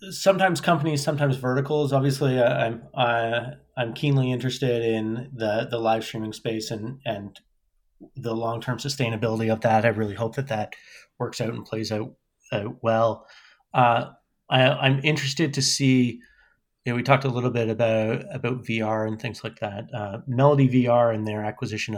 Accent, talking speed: American, 170 wpm